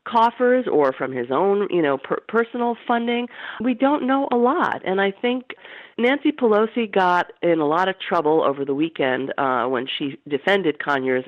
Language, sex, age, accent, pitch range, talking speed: English, female, 40-59, American, 140-210 Hz, 180 wpm